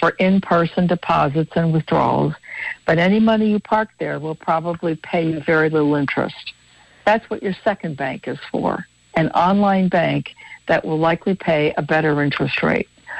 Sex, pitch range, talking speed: female, 155-185 Hz, 165 wpm